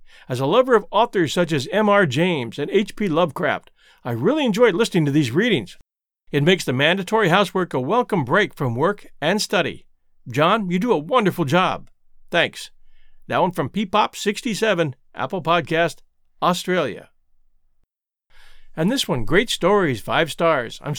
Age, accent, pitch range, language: 50-69, American, 155-210 Hz, English